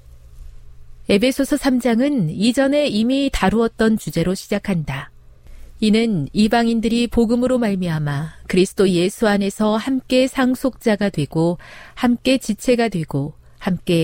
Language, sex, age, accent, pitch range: Korean, female, 40-59, native, 155-235 Hz